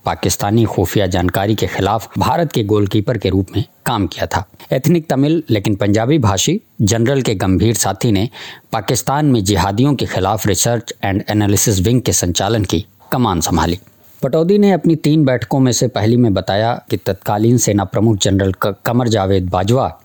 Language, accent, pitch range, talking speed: English, Indian, 100-130 Hz, 170 wpm